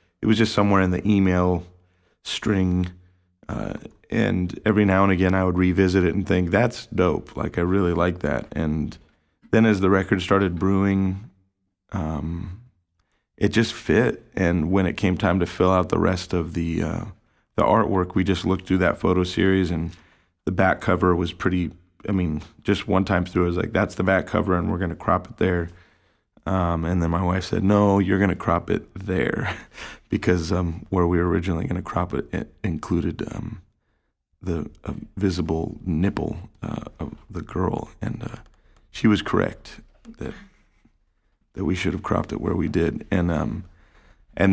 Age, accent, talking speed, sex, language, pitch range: 30-49, American, 180 wpm, male, English, 85-100 Hz